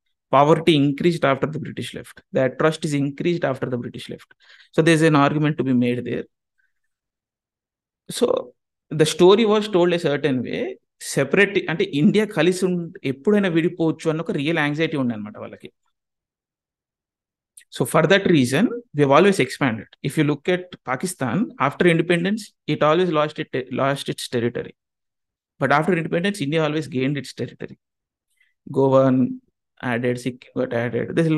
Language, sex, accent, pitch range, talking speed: Telugu, male, native, 130-175 Hz, 145 wpm